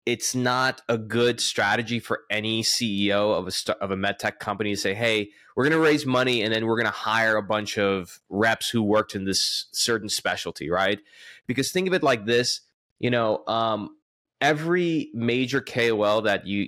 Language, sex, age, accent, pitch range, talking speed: English, male, 20-39, American, 110-135 Hz, 200 wpm